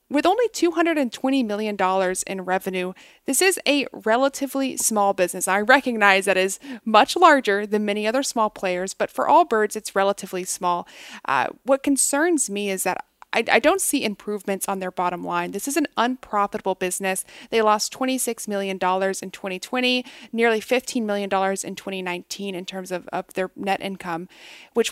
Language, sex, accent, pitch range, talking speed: English, female, American, 190-250 Hz, 165 wpm